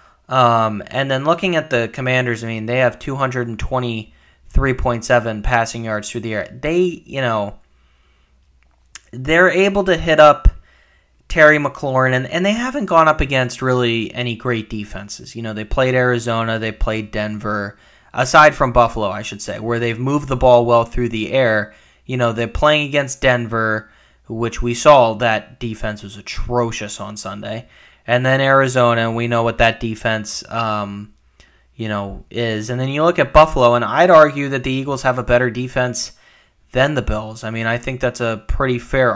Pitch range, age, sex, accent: 105-130 Hz, 20-39, male, American